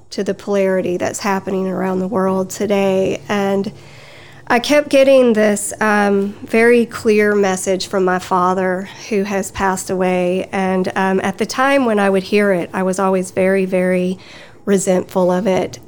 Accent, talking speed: American, 165 wpm